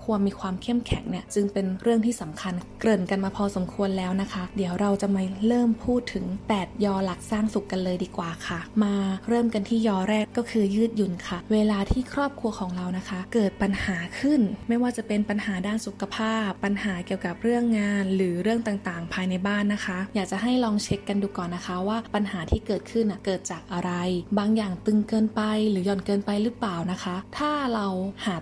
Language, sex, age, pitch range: Thai, female, 20-39, 190-220 Hz